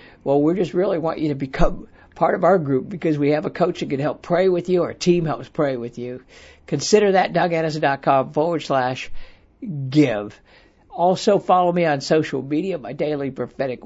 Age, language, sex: 60-79, English, male